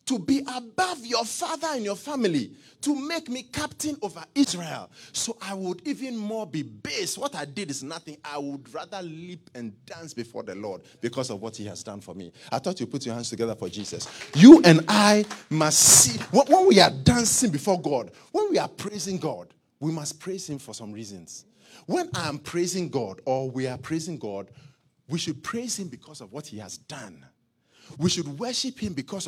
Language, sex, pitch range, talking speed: English, male, 130-220 Hz, 205 wpm